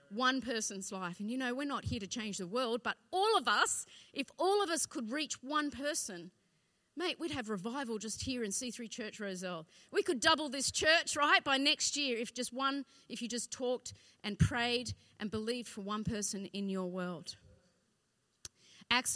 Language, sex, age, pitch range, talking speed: English, female, 40-59, 200-285 Hz, 195 wpm